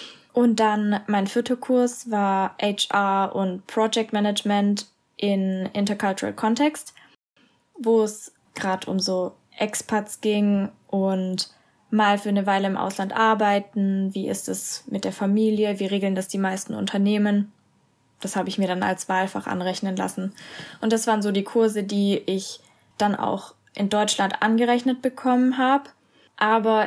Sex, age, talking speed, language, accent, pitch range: female, 20-39, 145 wpm, German, German, 195-220 Hz